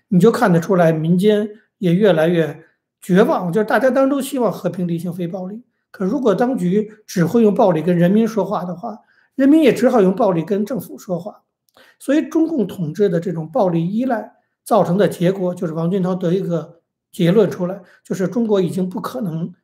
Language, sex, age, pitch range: Chinese, male, 50-69, 175-225 Hz